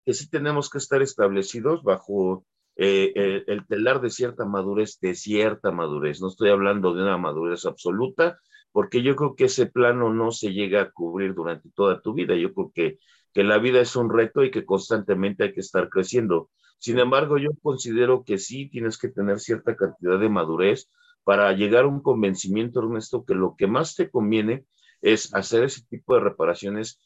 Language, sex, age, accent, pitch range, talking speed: Spanish, male, 50-69, Mexican, 105-160 Hz, 190 wpm